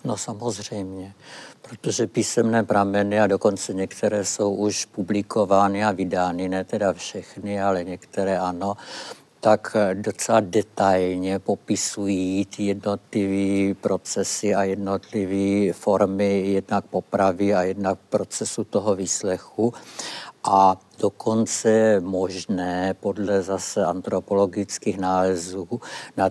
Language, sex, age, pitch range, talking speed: Czech, male, 60-79, 95-105 Hz, 105 wpm